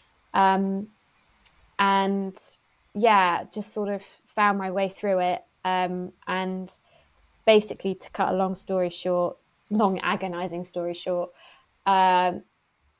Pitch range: 180-195 Hz